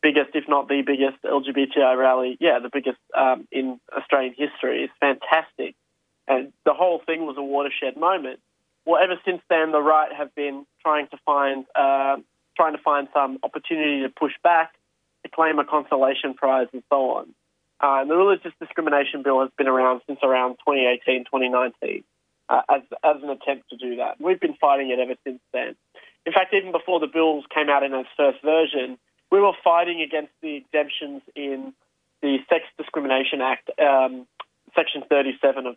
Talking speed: 180 wpm